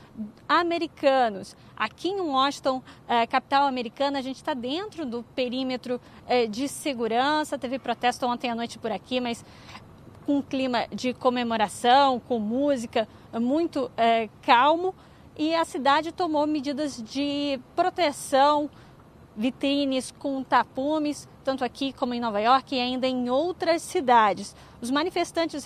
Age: 20-39